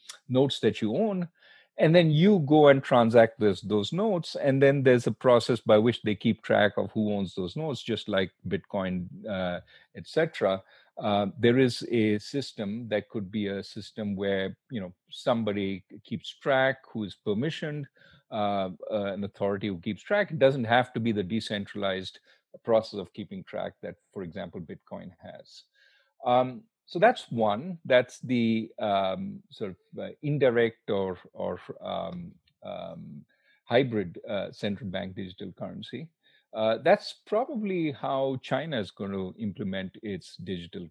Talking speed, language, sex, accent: 155 wpm, English, male, Indian